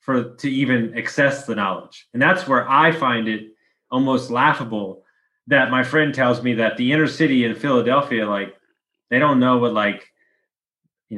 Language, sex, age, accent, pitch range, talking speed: English, male, 20-39, American, 115-150 Hz, 170 wpm